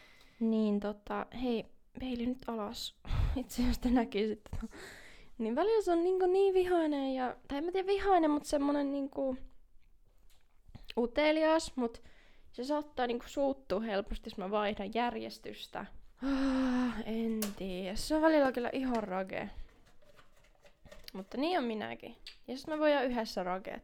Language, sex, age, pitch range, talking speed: Finnish, female, 20-39, 220-275 Hz, 145 wpm